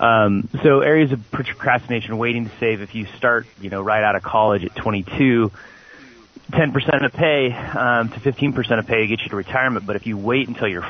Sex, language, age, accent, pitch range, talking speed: male, English, 30-49, American, 100-125 Hz, 205 wpm